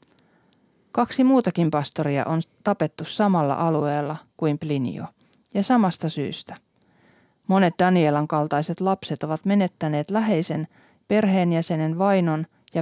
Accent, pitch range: native, 155-195 Hz